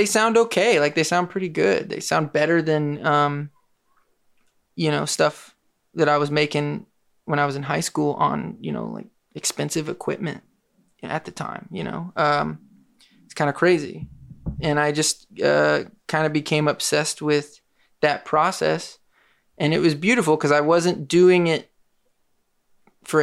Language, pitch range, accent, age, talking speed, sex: English, 150-175 Hz, American, 20-39, 165 wpm, male